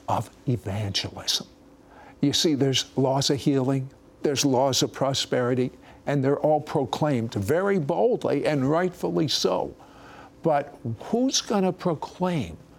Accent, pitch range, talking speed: American, 125-180 Hz, 120 wpm